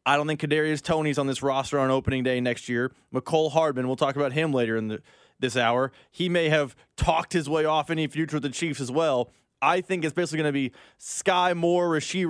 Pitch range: 140-195 Hz